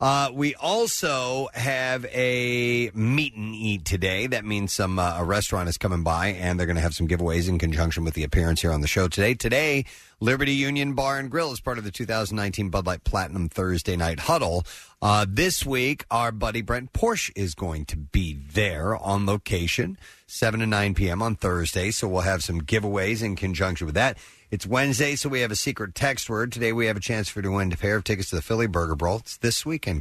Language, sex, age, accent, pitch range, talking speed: English, male, 40-59, American, 85-120 Hz, 220 wpm